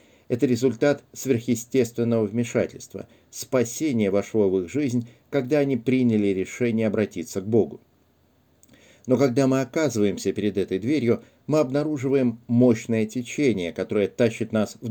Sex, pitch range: male, 105-130 Hz